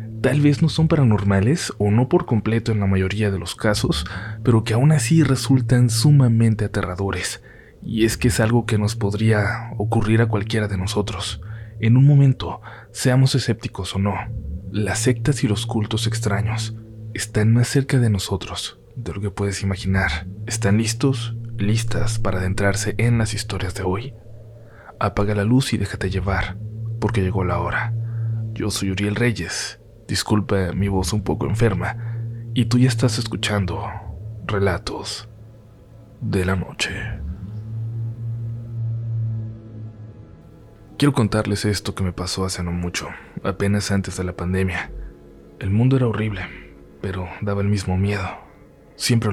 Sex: male